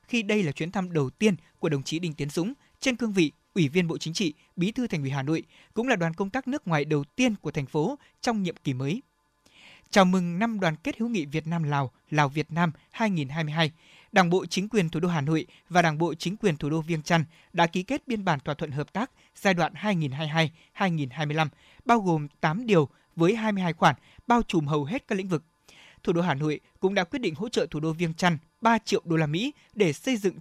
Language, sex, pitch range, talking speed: Vietnamese, male, 155-200 Hz, 245 wpm